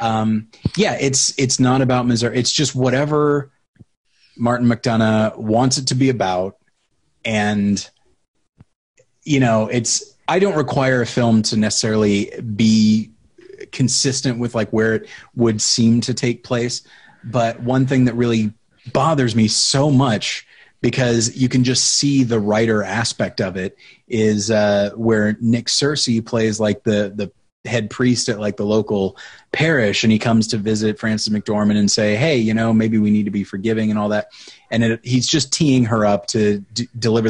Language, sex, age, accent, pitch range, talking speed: English, male, 30-49, American, 110-130 Hz, 170 wpm